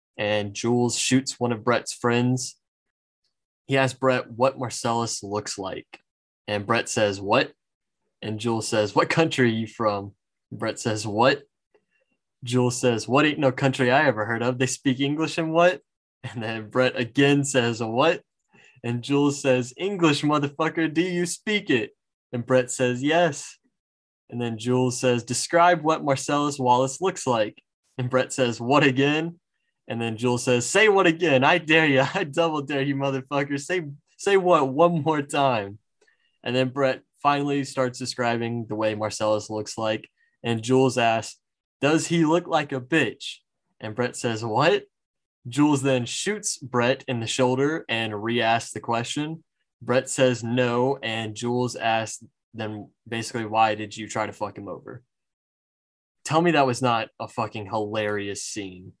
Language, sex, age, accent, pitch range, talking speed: English, male, 20-39, American, 115-145 Hz, 165 wpm